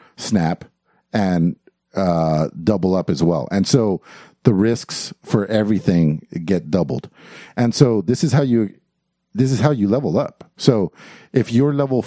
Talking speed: 155 wpm